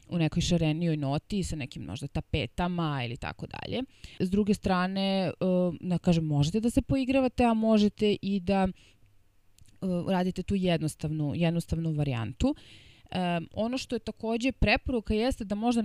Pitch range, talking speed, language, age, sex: 155-190 Hz, 135 wpm, English, 20-39, female